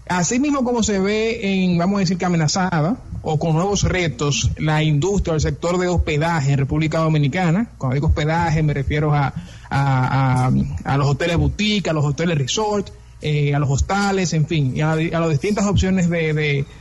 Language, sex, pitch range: Spanish, male, 155-190 Hz